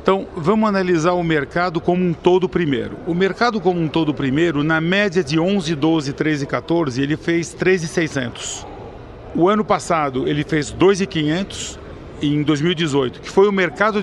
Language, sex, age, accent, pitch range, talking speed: Portuguese, male, 40-59, Brazilian, 150-185 Hz, 160 wpm